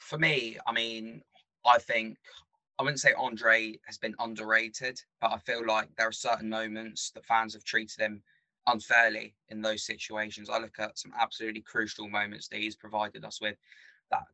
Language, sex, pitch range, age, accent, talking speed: English, male, 105-115 Hz, 20-39, British, 180 wpm